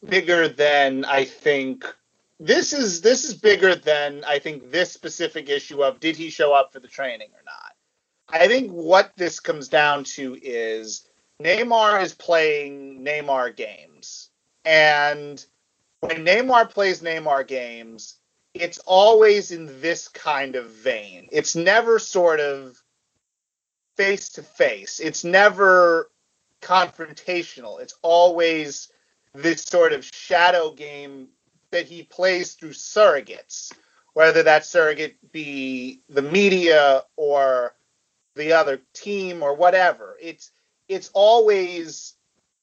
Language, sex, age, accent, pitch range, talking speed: English, male, 30-49, American, 145-195 Hz, 125 wpm